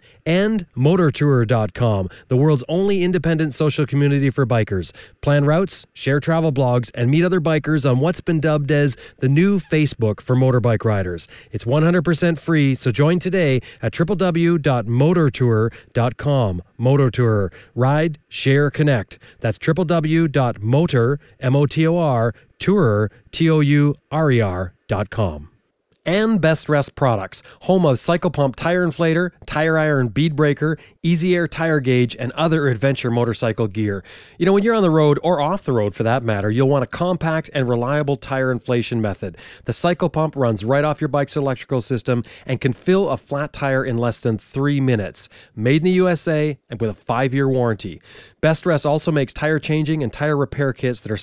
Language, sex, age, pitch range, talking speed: English, male, 30-49, 115-155 Hz, 155 wpm